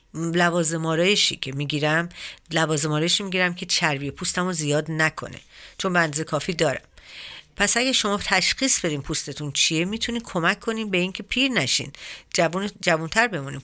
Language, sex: Persian, female